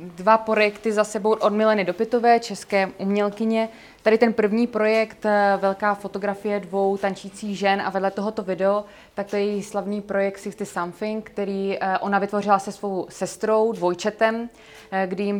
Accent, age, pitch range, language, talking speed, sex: native, 20-39, 185-210 Hz, Czech, 155 wpm, female